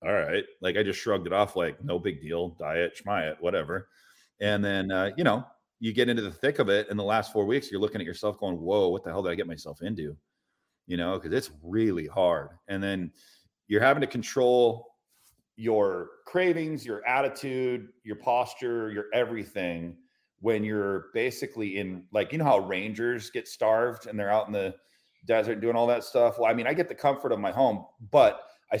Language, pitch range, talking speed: English, 100-125 Hz, 205 wpm